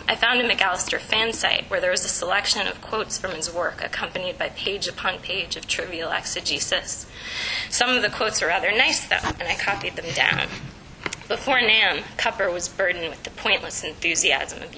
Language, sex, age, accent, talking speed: English, female, 20-39, American, 190 wpm